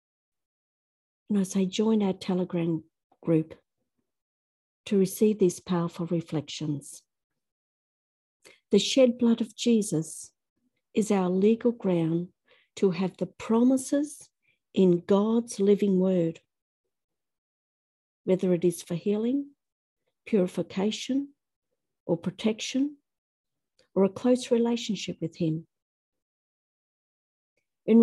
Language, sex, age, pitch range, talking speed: English, female, 50-69, 175-235 Hz, 95 wpm